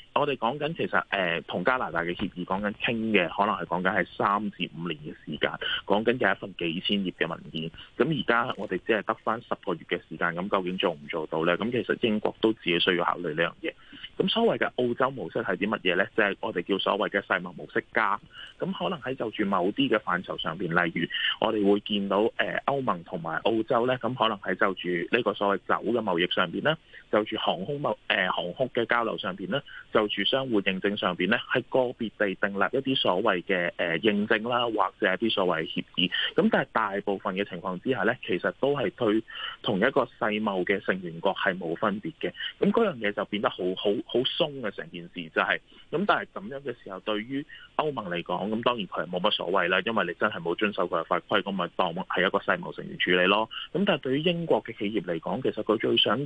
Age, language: 20-39, Chinese